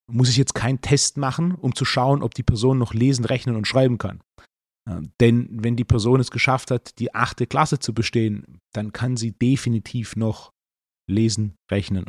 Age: 40-59